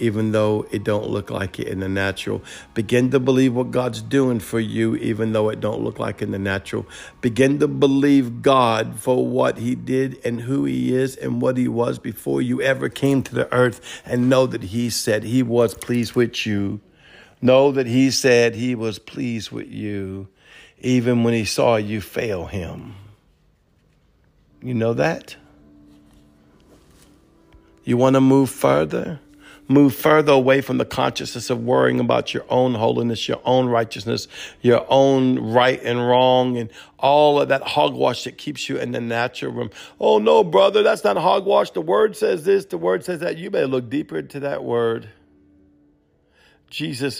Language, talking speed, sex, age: English, 175 wpm, male, 50-69